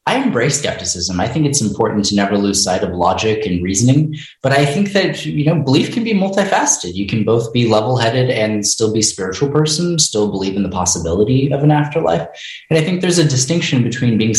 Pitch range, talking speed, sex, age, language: 95-125 Hz, 215 wpm, male, 20-39, English